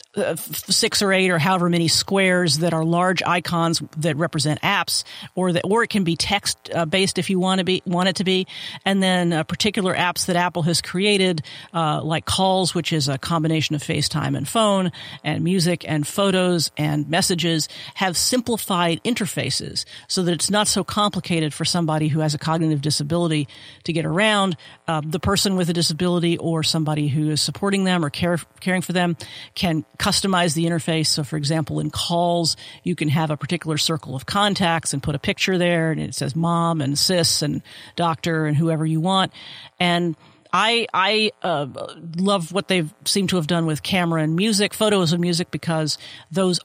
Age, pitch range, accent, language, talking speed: 50-69, 155-195 Hz, American, English, 190 wpm